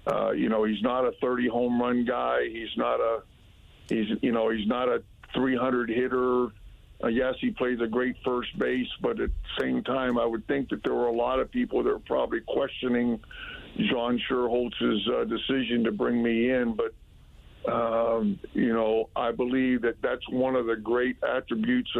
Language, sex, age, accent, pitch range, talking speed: English, male, 50-69, American, 115-130 Hz, 180 wpm